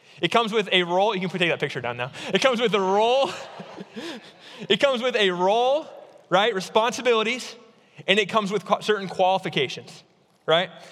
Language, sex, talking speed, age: English, male, 170 wpm, 20-39